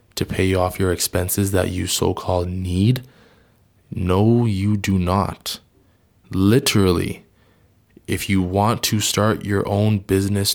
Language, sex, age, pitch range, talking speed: English, male, 20-39, 95-115 Hz, 125 wpm